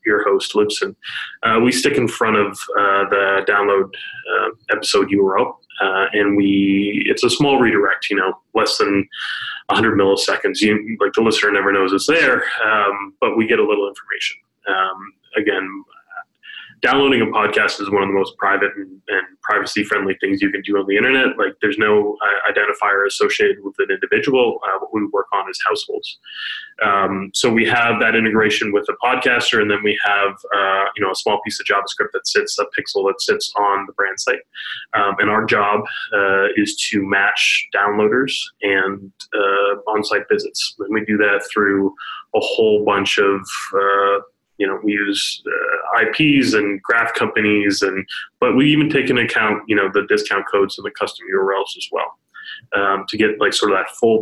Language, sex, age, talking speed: English, male, 20-39, 185 wpm